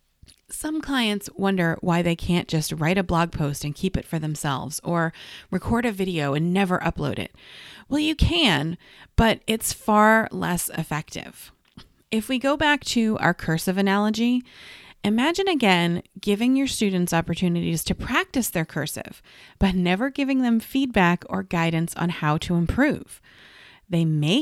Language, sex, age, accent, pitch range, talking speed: English, female, 30-49, American, 170-230 Hz, 155 wpm